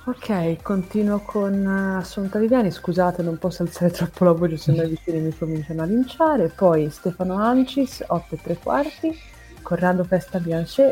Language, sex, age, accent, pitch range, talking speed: Italian, female, 30-49, native, 160-215 Hz, 165 wpm